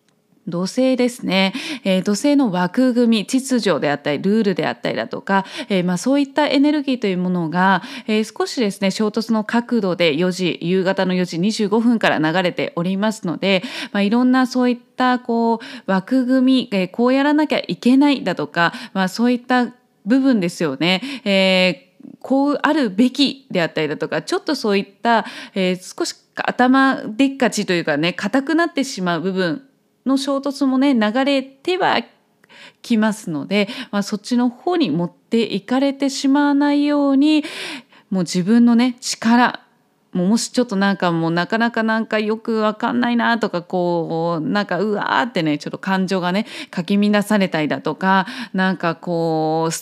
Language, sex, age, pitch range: Japanese, female, 20-39, 185-255 Hz